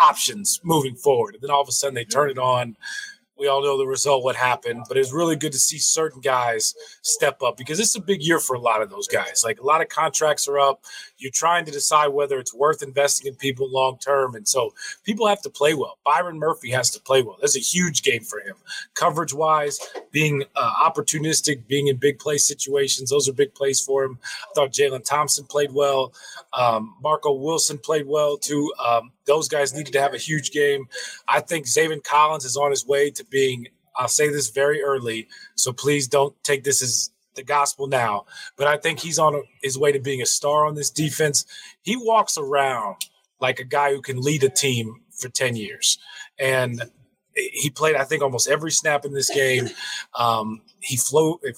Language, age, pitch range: English, 30-49, 135-155 Hz